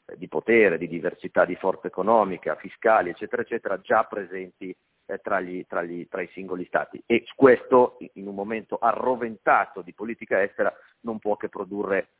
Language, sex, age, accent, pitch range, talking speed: Italian, male, 40-59, native, 95-125 Hz, 155 wpm